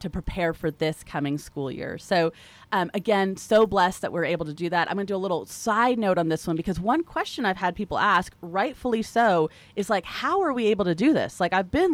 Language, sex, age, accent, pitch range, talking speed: English, female, 30-49, American, 165-210 Hz, 245 wpm